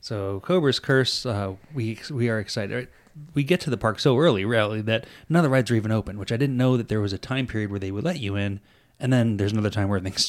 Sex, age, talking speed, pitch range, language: male, 20-39, 275 wpm, 100-140 Hz, English